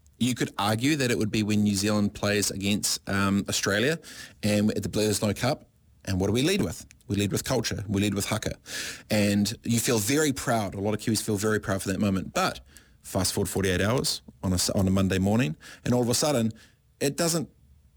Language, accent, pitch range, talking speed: English, Australian, 105-125 Hz, 225 wpm